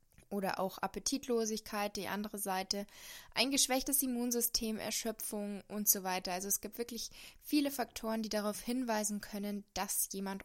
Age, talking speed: 20-39, 145 wpm